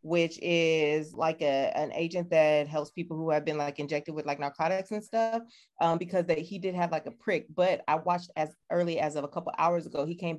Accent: American